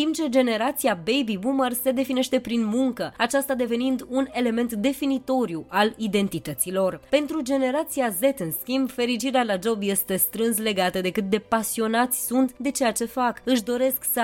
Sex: female